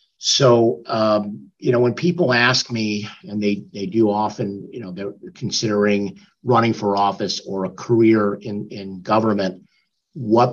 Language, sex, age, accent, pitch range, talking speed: English, male, 50-69, American, 100-125 Hz, 155 wpm